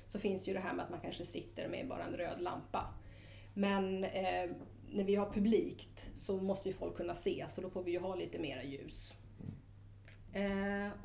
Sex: female